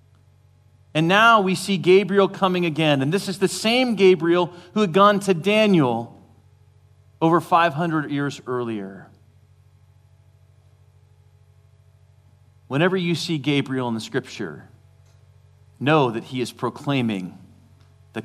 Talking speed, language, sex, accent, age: 115 wpm, English, male, American, 40-59